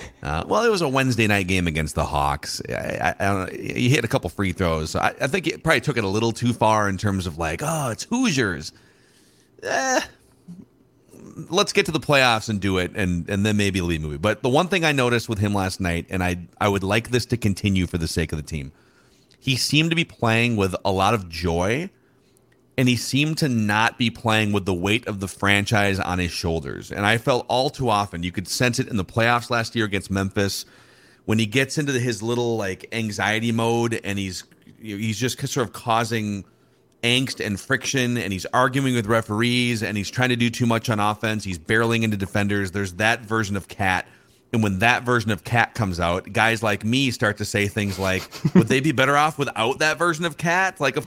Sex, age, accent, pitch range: male, 40-59, American, 100-125 Hz